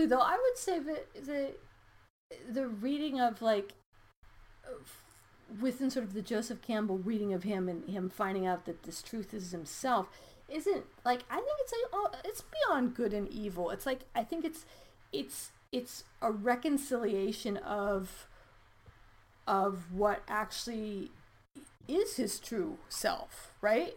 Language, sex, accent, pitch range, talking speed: English, female, American, 205-265 Hz, 150 wpm